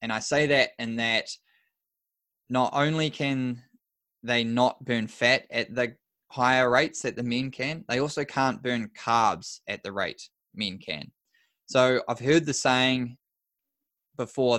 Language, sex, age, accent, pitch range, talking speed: English, male, 10-29, Australian, 115-135 Hz, 150 wpm